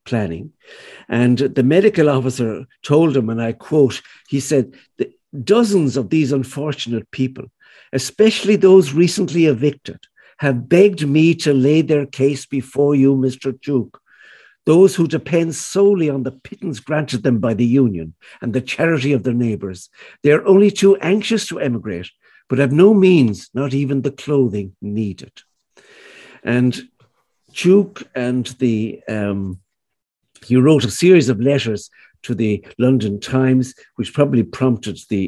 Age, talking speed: 60-79, 145 wpm